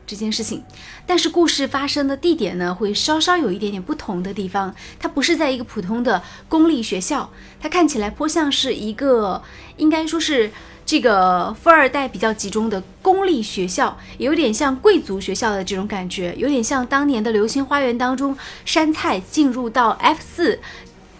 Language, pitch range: Chinese, 210-285 Hz